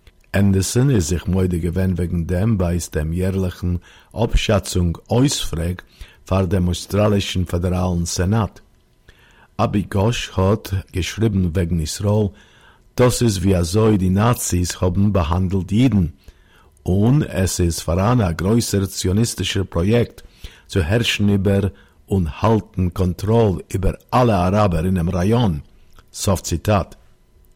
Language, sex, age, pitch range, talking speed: Hebrew, male, 50-69, 90-105 Hz, 110 wpm